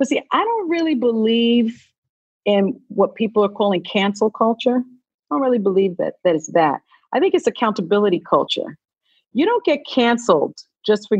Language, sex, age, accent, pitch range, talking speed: English, female, 40-59, American, 180-265 Hz, 170 wpm